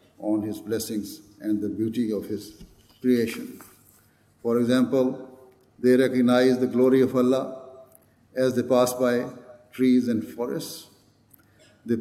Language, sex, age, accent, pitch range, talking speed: English, male, 60-79, Indian, 110-130 Hz, 125 wpm